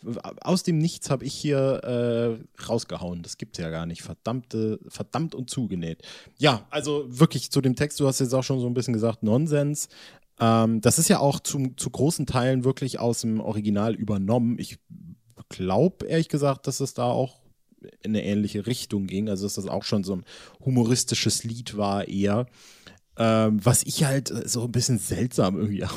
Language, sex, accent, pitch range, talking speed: German, male, German, 100-130 Hz, 180 wpm